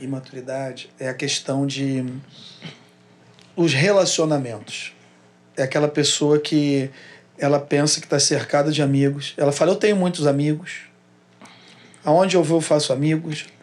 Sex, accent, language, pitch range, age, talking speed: male, Brazilian, Portuguese, 130-165 Hz, 40-59, 130 wpm